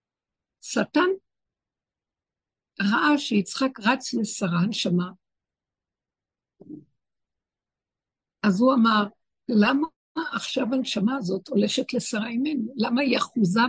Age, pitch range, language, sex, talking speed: 60-79, 205-265 Hz, Hebrew, female, 85 wpm